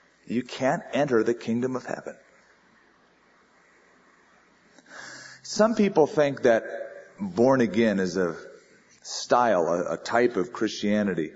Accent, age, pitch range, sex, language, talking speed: American, 40-59, 105-145 Hz, male, English, 110 wpm